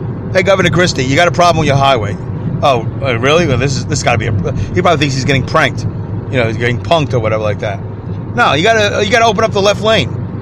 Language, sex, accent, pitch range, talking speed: English, male, American, 120-185 Hz, 260 wpm